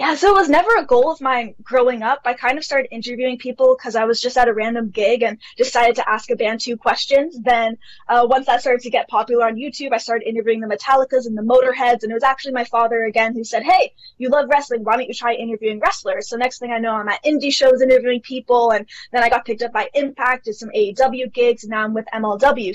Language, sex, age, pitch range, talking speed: English, female, 10-29, 230-280 Hz, 260 wpm